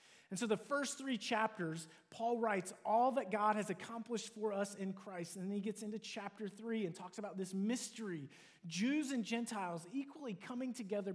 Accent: American